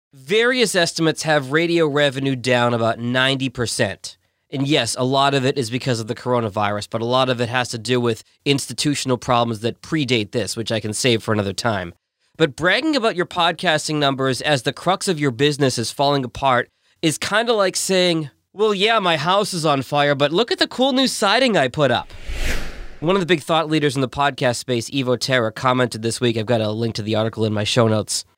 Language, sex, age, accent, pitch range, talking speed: English, male, 20-39, American, 115-160 Hz, 220 wpm